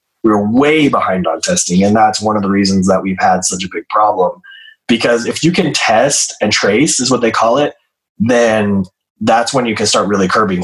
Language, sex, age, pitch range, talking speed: English, male, 20-39, 100-120 Hz, 220 wpm